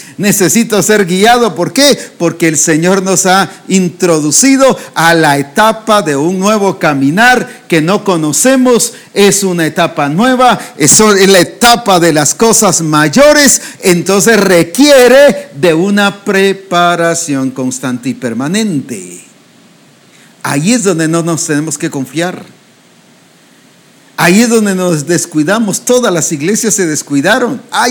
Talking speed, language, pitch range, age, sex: 125 wpm, English, 160-225 Hz, 50-69, male